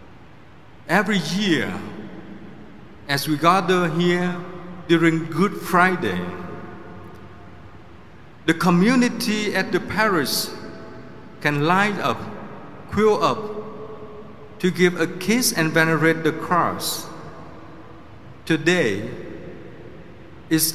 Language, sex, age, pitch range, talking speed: Vietnamese, male, 50-69, 160-190 Hz, 85 wpm